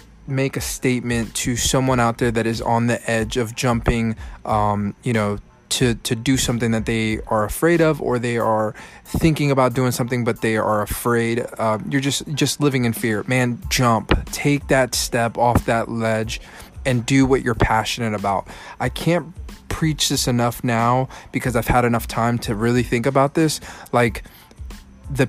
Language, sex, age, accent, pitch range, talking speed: English, male, 20-39, American, 115-135 Hz, 180 wpm